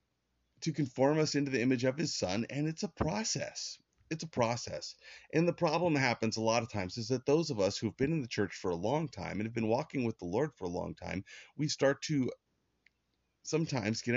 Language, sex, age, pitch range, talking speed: English, male, 30-49, 90-130 Hz, 235 wpm